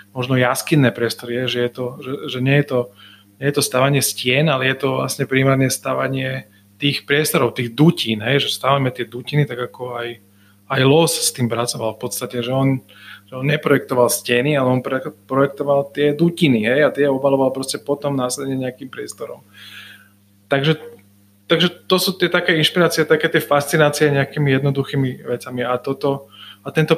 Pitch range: 120-140 Hz